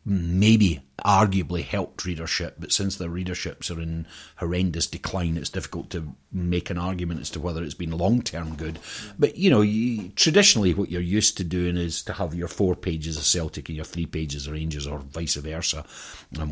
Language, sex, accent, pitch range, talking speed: English, male, British, 80-100 Hz, 195 wpm